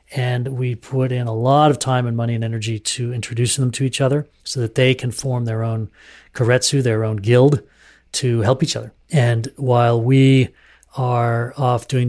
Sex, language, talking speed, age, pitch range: male, English, 195 wpm, 40-59, 120-145 Hz